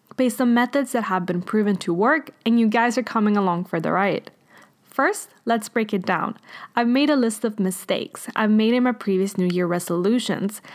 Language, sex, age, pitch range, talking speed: English, female, 10-29, 200-260 Hz, 205 wpm